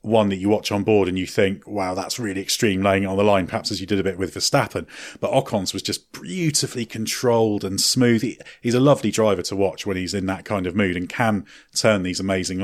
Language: English